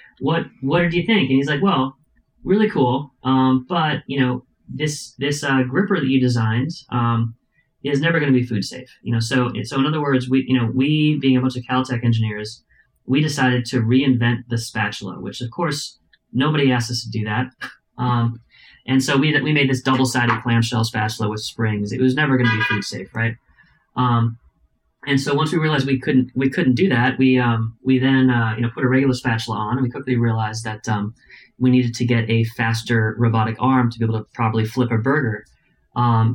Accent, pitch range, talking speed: American, 115-135 Hz, 215 wpm